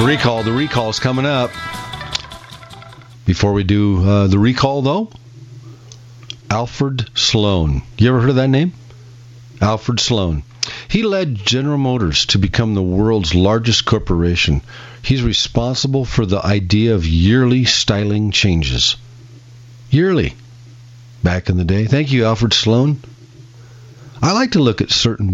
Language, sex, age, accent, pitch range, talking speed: English, male, 50-69, American, 105-125 Hz, 135 wpm